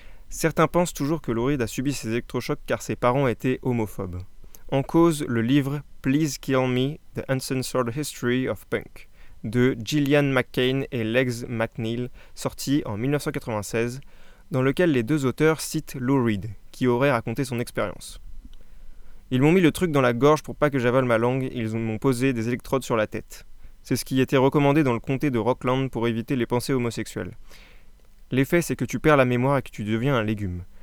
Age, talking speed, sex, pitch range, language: 20-39, 200 wpm, male, 115-145 Hz, French